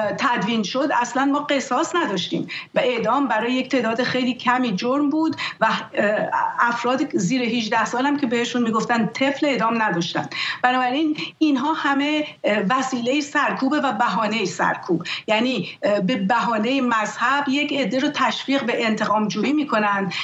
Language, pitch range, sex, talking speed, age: English, 220-275 Hz, female, 140 wpm, 50-69